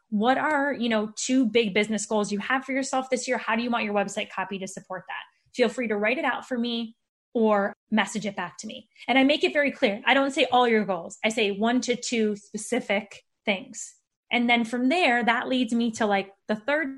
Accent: American